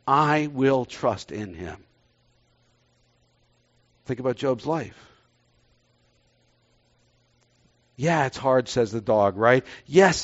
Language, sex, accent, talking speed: English, male, American, 100 wpm